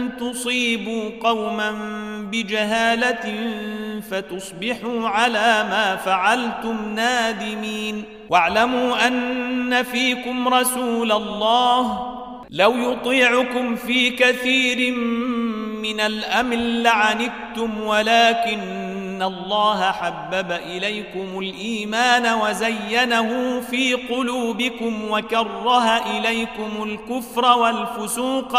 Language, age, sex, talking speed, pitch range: Arabic, 40-59, male, 65 wpm, 215-245 Hz